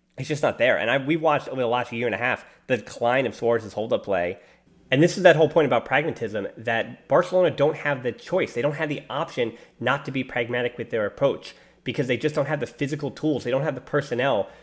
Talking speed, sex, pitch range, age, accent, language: 245 wpm, male, 115-145 Hz, 20-39, American, English